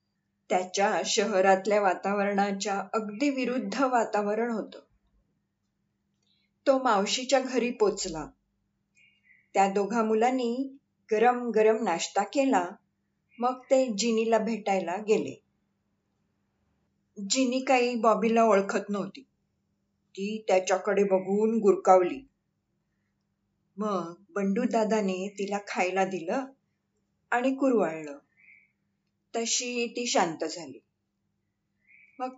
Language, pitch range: Marathi, 195-245 Hz